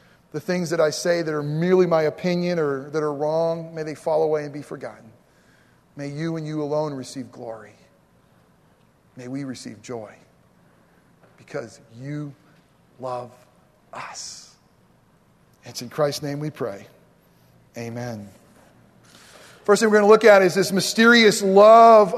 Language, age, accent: English, 40-59, American